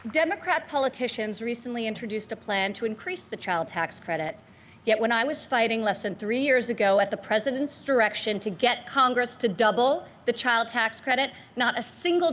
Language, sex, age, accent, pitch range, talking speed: Hindi, female, 40-59, American, 200-260 Hz, 185 wpm